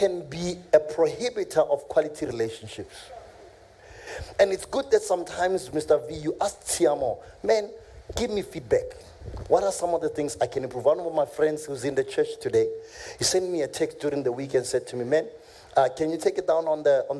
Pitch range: 155-220 Hz